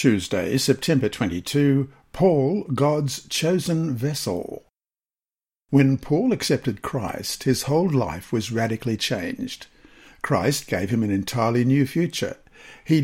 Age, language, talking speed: 60-79, English, 115 wpm